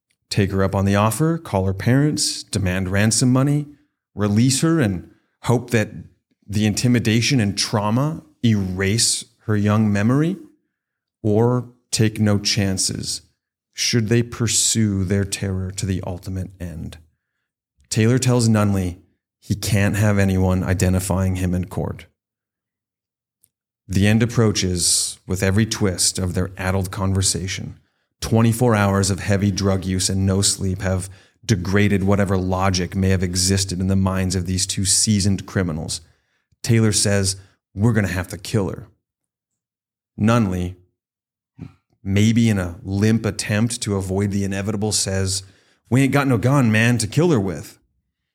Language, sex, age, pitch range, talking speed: English, male, 30-49, 95-115 Hz, 140 wpm